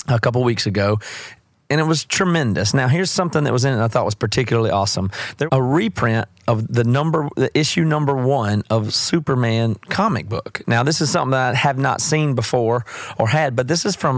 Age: 30-49